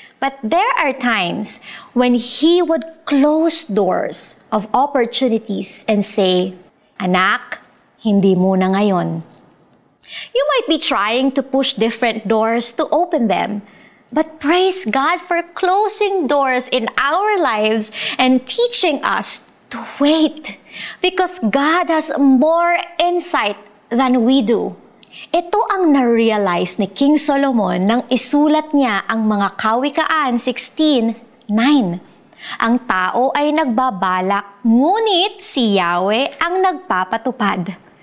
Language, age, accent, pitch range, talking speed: Filipino, 20-39, native, 215-315 Hz, 115 wpm